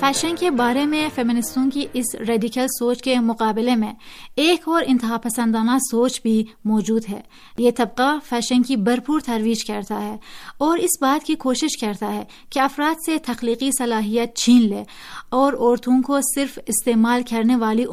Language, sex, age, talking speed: Urdu, female, 30-49, 165 wpm